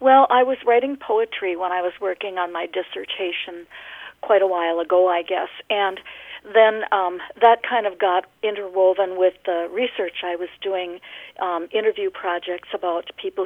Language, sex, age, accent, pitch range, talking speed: English, female, 50-69, American, 180-260 Hz, 165 wpm